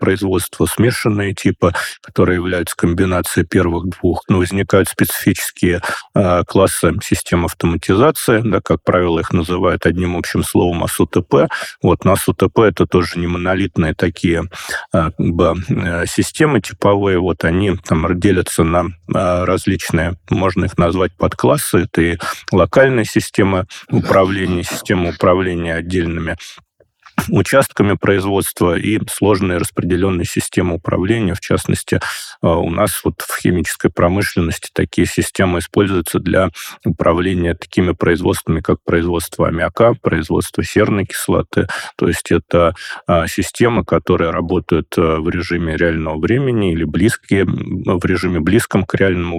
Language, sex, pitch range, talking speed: Russian, male, 85-95 Hz, 125 wpm